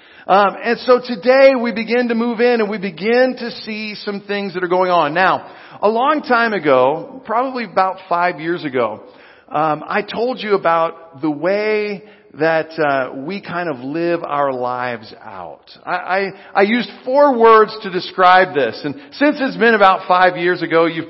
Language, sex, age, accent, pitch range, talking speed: English, male, 50-69, American, 170-230 Hz, 180 wpm